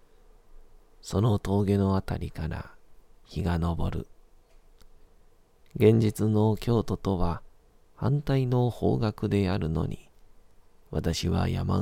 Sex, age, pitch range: male, 40-59, 85-105 Hz